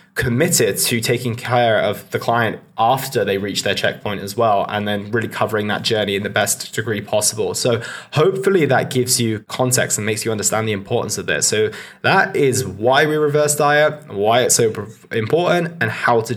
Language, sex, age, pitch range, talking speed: English, male, 20-39, 105-130 Hz, 195 wpm